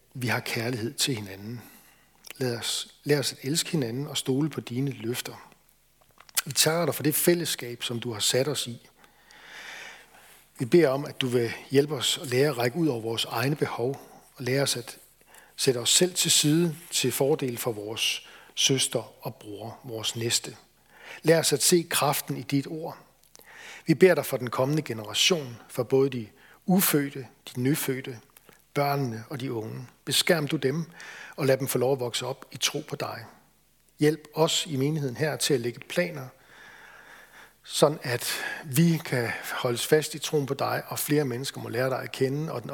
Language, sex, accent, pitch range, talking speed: Danish, male, native, 120-150 Hz, 185 wpm